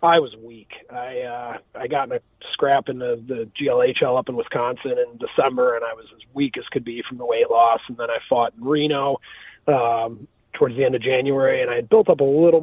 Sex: male